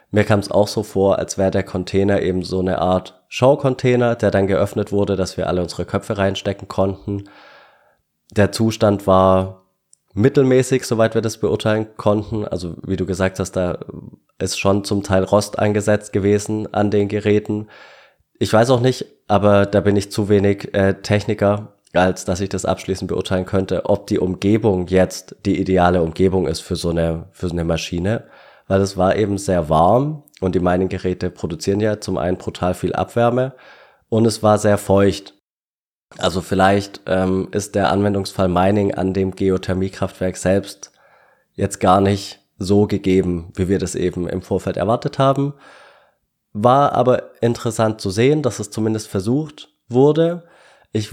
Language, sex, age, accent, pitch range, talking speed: German, male, 20-39, German, 95-110 Hz, 165 wpm